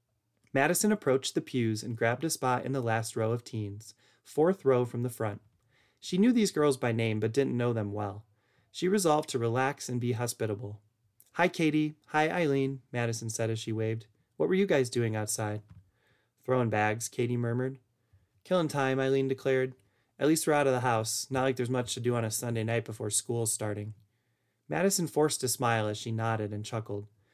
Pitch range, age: 110-135 Hz, 30-49